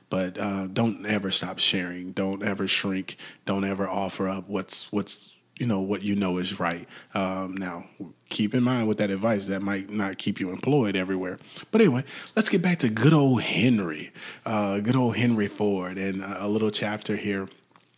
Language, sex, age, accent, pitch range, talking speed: English, male, 30-49, American, 100-125 Hz, 185 wpm